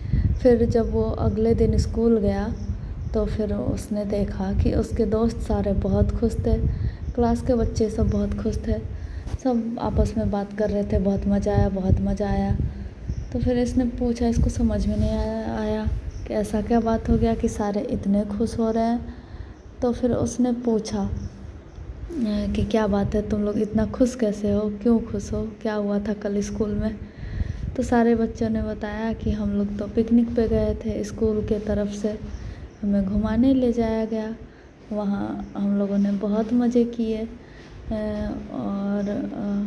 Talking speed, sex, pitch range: 170 wpm, female, 205-230 Hz